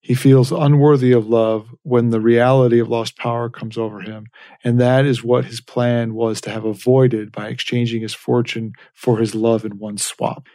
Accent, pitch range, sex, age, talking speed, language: American, 115-130 Hz, male, 40-59, 195 wpm, English